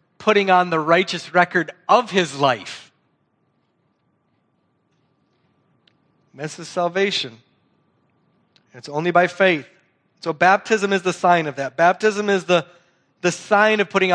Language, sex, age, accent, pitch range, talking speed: English, male, 30-49, American, 165-200 Hz, 125 wpm